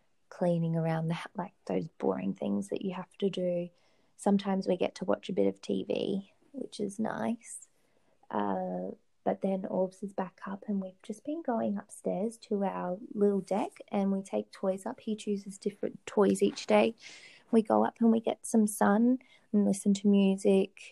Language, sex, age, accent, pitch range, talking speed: English, female, 20-39, Australian, 170-215 Hz, 185 wpm